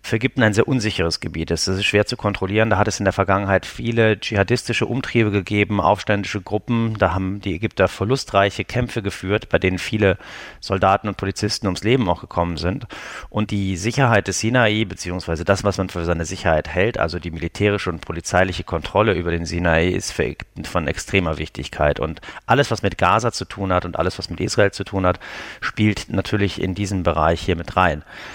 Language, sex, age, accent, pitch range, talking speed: German, male, 40-59, German, 90-110 Hz, 195 wpm